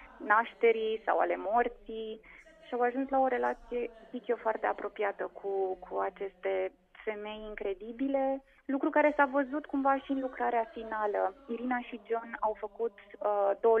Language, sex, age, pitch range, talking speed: Romanian, female, 20-39, 210-255 Hz, 150 wpm